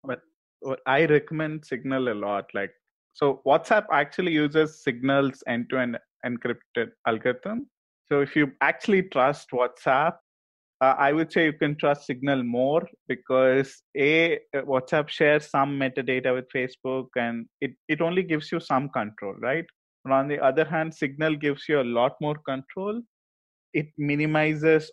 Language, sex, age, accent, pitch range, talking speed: English, male, 20-39, Indian, 125-155 Hz, 145 wpm